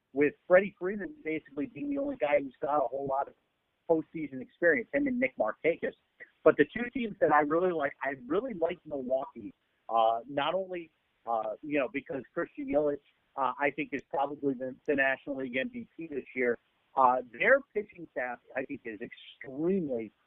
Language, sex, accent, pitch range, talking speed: English, male, American, 135-185 Hz, 180 wpm